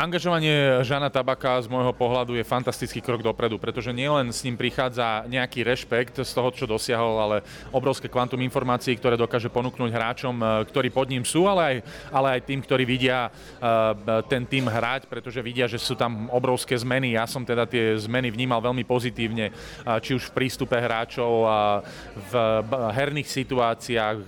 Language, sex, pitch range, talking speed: Slovak, male, 115-130 Hz, 165 wpm